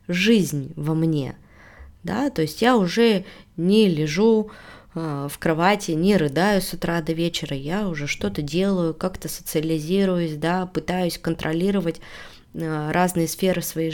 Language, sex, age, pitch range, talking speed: Russian, female, 20-39, 165-210 Hz, 130 wpm